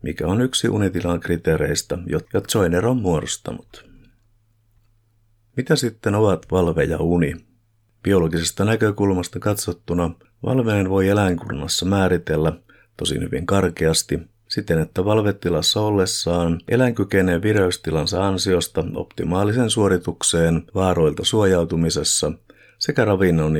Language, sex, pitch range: Finnish, male, 85-110 Hz